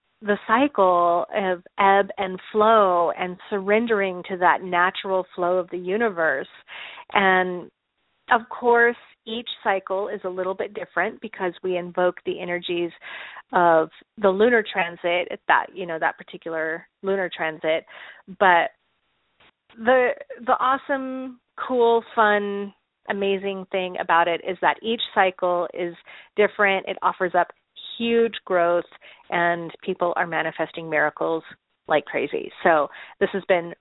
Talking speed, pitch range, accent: 130 wpm, 180-215 Hz, American